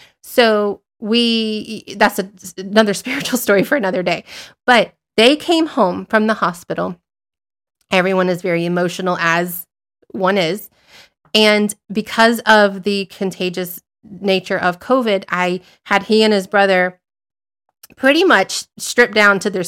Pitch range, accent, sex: 180-220 Hz, American, female